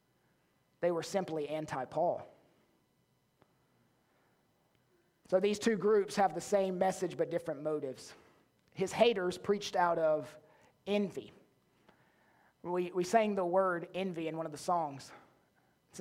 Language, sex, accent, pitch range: English, male, American, 180-255 Hz